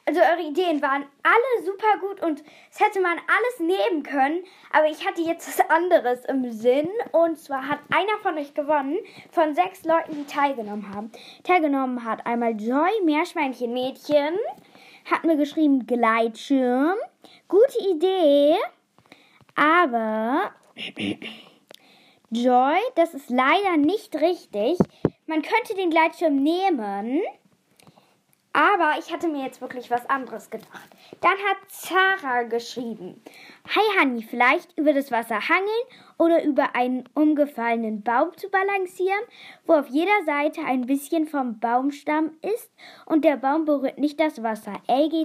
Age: 10-29